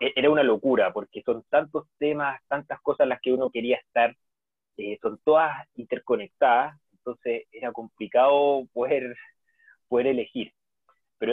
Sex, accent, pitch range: male, Argentinian, 115-140 Hz